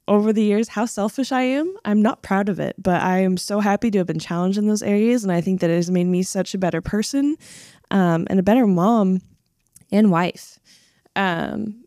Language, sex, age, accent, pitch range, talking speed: English, female, 10-29, American, 185-220 Hz, 220 wpm